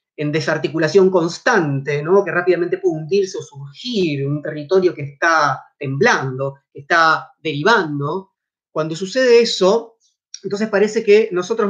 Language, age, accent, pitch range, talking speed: Spanish, 30-49, Argentinian, 160-225 Hz, 135 wpm